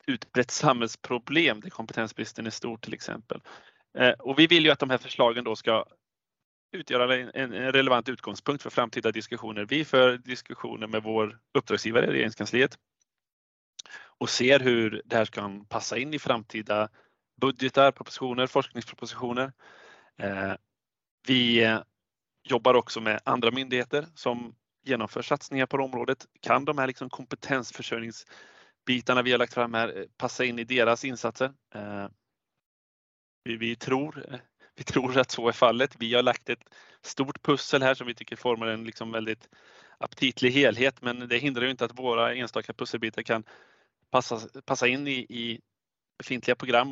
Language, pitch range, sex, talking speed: Swedish, 115-130 Hz, male, 145 wpm